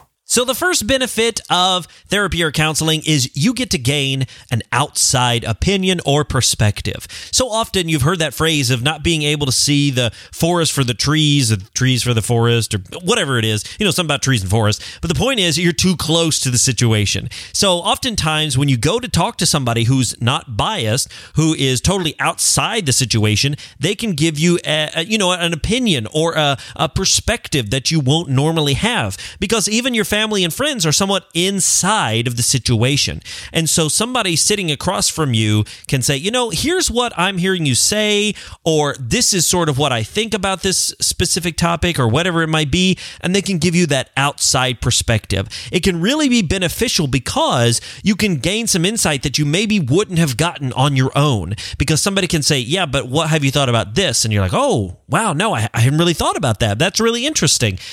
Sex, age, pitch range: male, 30-49, 125-180 Hz